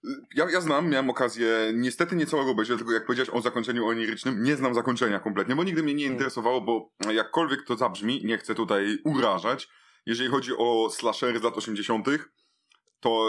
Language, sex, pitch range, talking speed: Polish, male, 105-130 Hz, 175 wpm